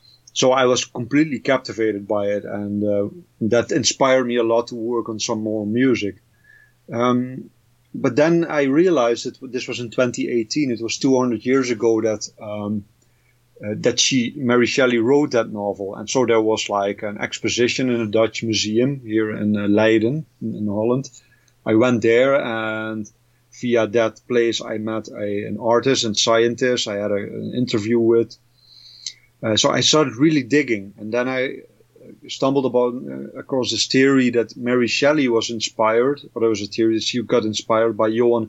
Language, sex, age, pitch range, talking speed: English, male, 30-49, 110-125 Hz, 175 wpm